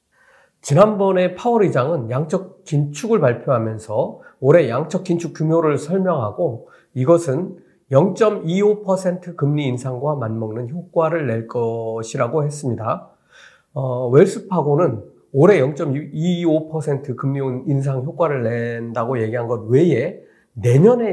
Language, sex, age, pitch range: Korean, male, 40-59, 125-180 Hz